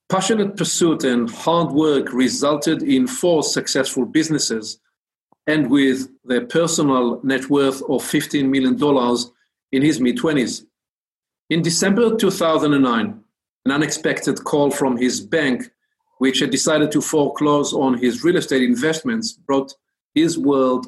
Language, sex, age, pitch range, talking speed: English, male, 50-69, 130-165 Hz, 130 wpm